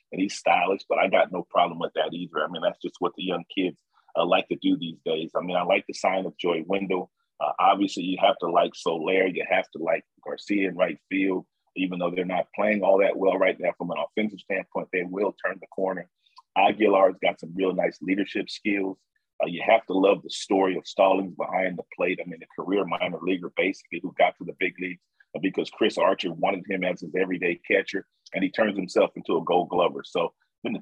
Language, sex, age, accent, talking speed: English, male, 40-59, American, 235 wpm